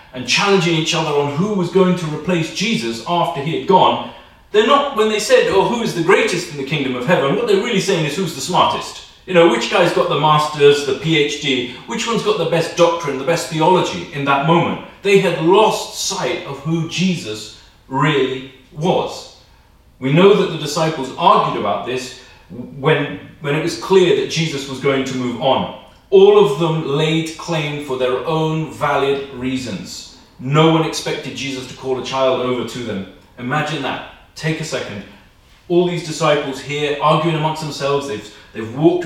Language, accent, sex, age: English, British, male, 40-59